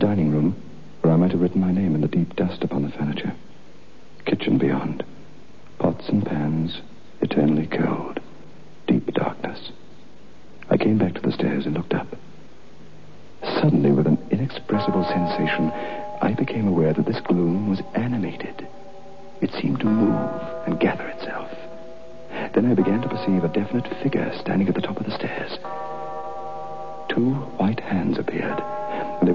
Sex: male